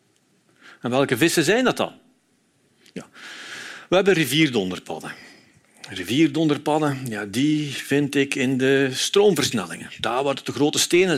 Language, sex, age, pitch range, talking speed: Dutch, male, 50-69, 115-155 Hz, 125 wpm